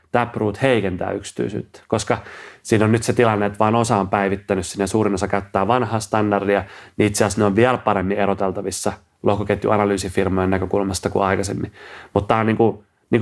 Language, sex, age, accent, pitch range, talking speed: Finnish, male, 30-49, native, 100-125 Hz, 175 wpm